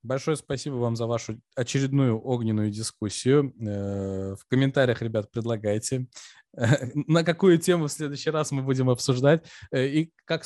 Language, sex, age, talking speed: Russian, male, 20-39, 130 wpm